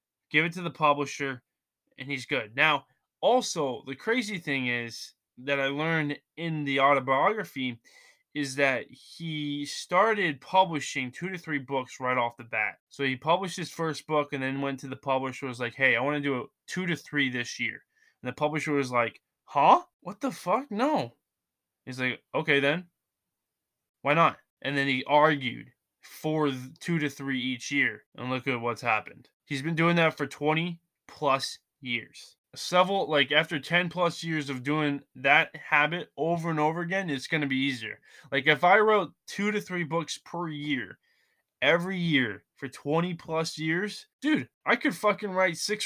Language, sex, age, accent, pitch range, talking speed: English, male, 20-39, American, 135-175 Hz, 180 wpm